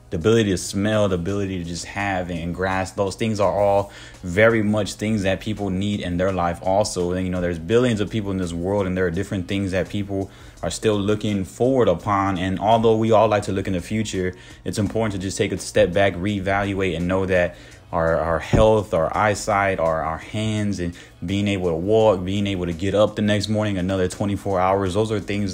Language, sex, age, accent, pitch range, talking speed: English, male, 20-39, American, 90-110 Hz, 230 wpm